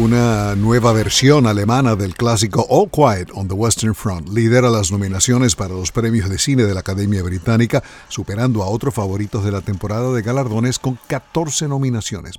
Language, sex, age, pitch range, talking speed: Spanish, male, 50-69, 100-135 Hz, 175 wpm